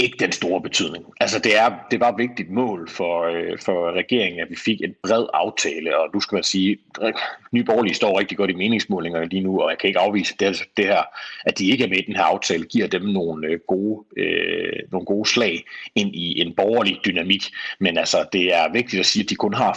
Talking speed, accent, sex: 235 wpm, native, male